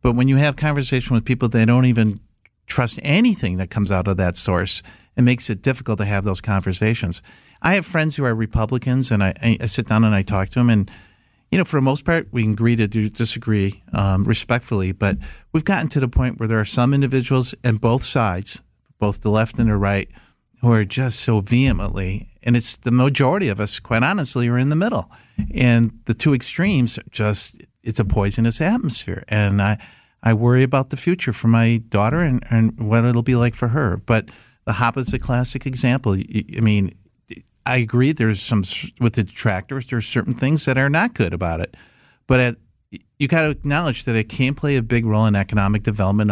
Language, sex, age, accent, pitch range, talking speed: English, male, 50-69, American, 105-130 Hz, 210 wpm